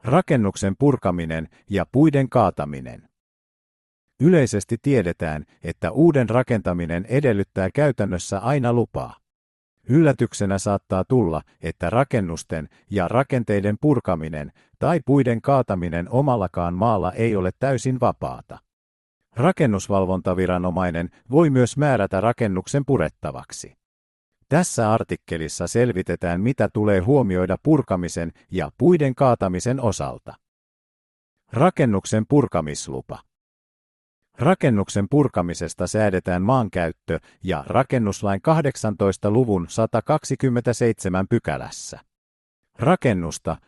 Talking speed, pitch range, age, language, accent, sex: 85 wpm, 90-125 Hz, 50-69, Finnish, native, male